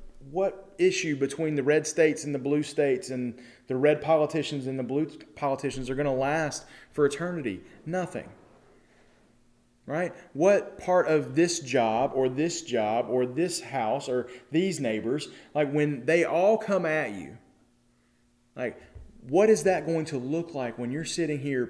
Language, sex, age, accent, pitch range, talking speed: English, male, 30-49, American, 125-170 Hz, 165 wpm